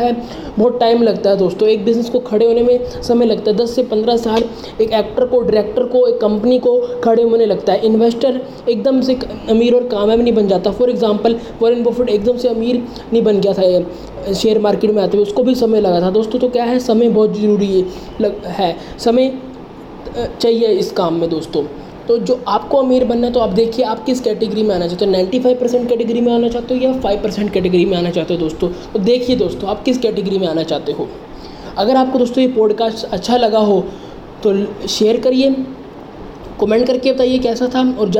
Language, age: English, 20-39